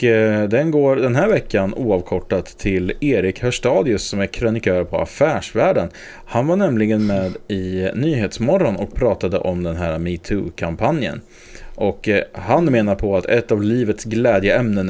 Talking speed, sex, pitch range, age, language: 140 wpm, male, 95-115 Hz, 30-49, English